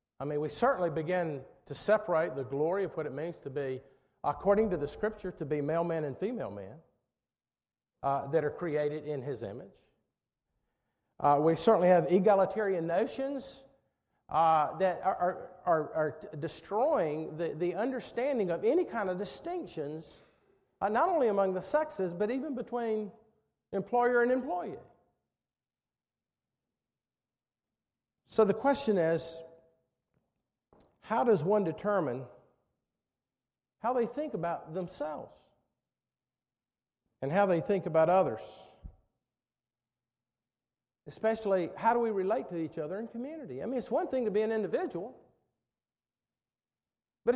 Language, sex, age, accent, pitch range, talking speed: English, male, 50-69, American, 155-225 Hz, 135 wpm